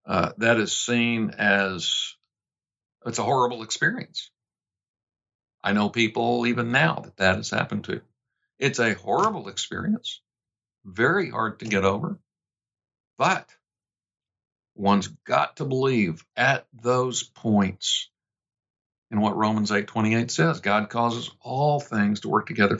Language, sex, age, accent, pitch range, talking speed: English, male, 60-79, American, 105-125 Hz, 130 wpm